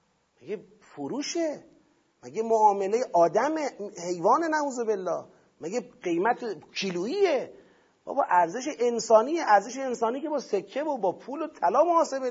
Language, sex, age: Persian, male, 40-59